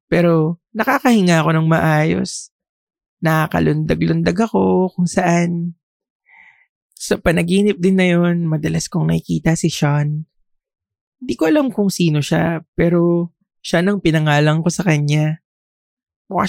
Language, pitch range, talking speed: English, 160-185 Hz, 120 wpm